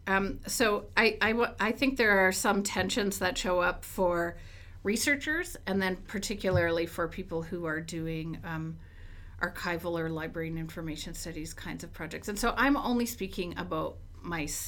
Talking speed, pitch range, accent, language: 165 wpm, 160-195 Hz, American, English